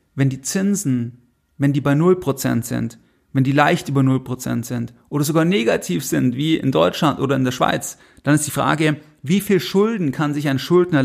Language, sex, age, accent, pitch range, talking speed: German, male, 40-59, German, 135-160 Hz, 195 wpm